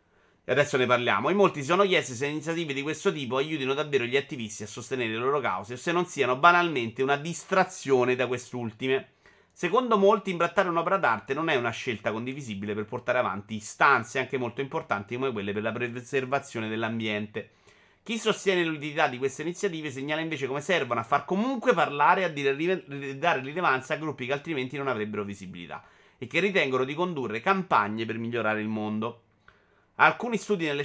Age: 30-49